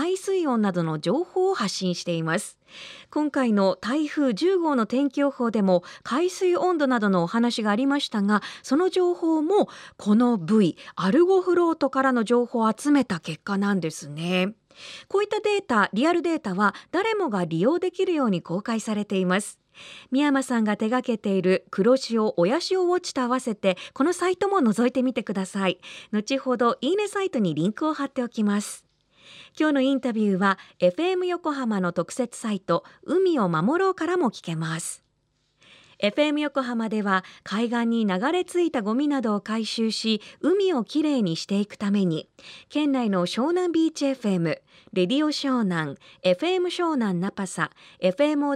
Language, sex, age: Japanese, female, 40-59